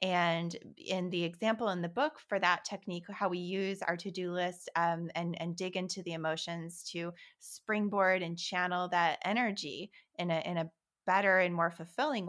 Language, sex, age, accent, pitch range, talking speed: English, female, 20-39, American, 170-205 Hz, 180 wpm